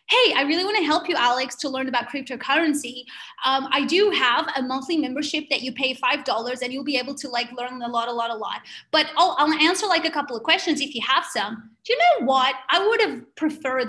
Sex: female